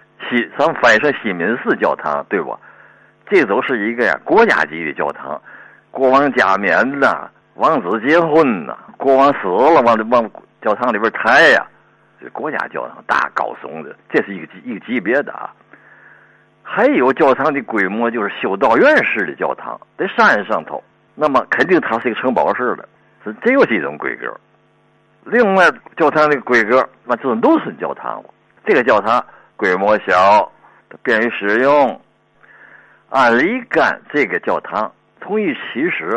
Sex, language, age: male, Chinese, 60-79